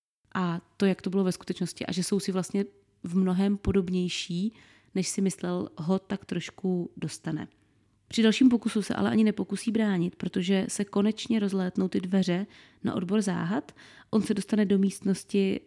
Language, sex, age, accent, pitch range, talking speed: Czech, female, 30-49, native, 180-210 Hz, 170 wpm